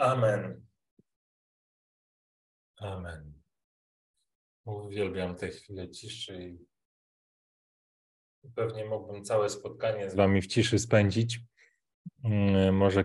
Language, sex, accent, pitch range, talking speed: Polish, male, native, 100-115 Hz, 80 wpm